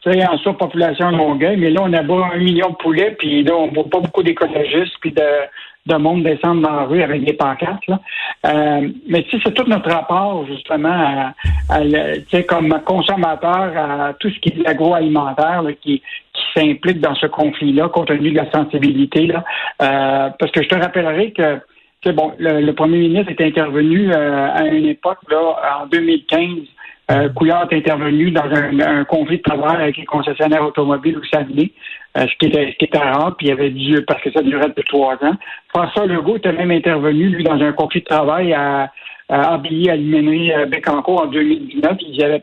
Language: French